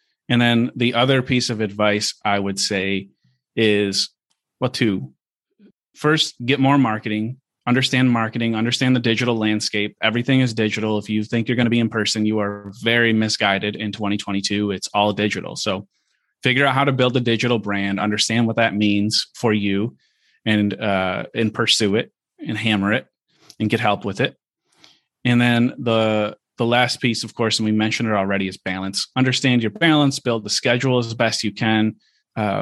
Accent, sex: American, male